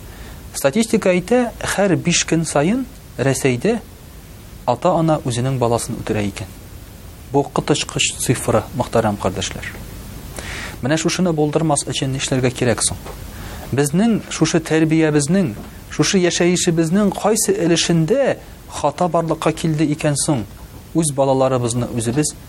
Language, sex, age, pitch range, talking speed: Russian, male, 40-59, 115-160 Hz, 125 wpm